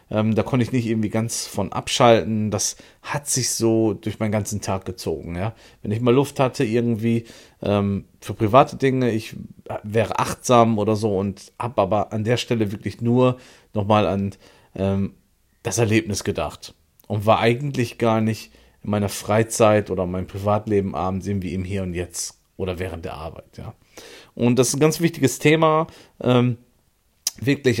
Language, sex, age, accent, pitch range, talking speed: German, male, 40-59, German, 100-120 Hz, 160 wpm